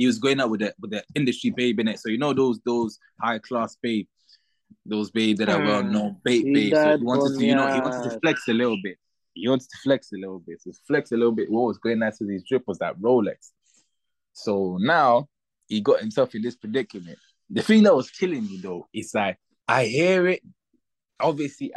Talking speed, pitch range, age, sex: 225 wpm, 105-150 Hz, 20-39, male